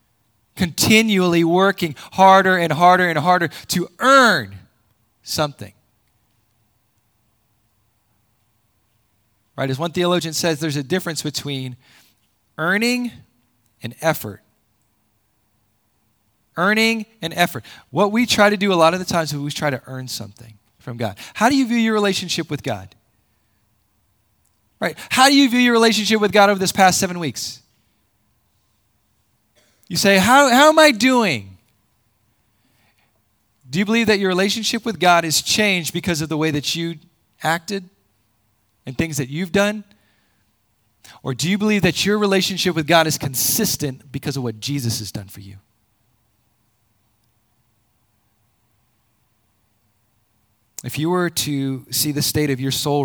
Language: English